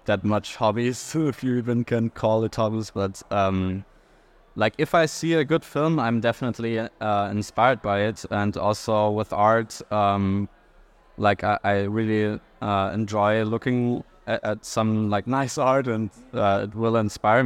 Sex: male